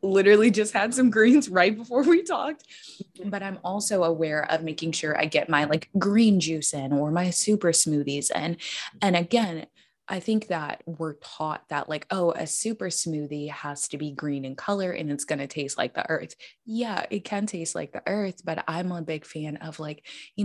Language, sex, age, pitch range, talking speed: English, female, 20-39, 145-190 Hz, 205 wpm